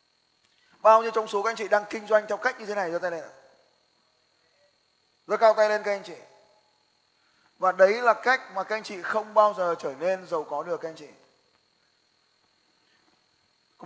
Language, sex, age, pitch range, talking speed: Vietnamese, male, 20-39, 175-225 Hz, 200 wpm